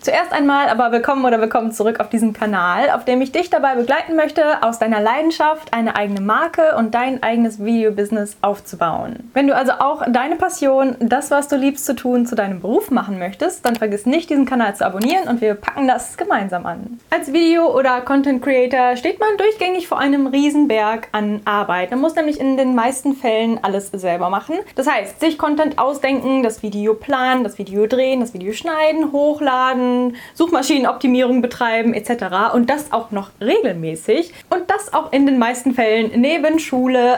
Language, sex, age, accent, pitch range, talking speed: German, female, 10-29, German, 225-295 Hz, 180 wpm